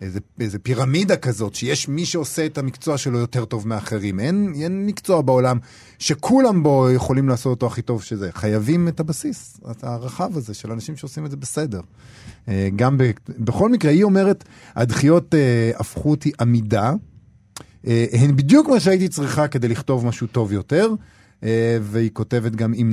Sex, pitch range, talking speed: male, 110-150 Hz, 165 wpm